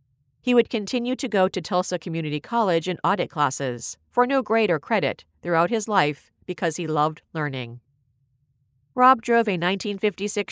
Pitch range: 145-210 Hz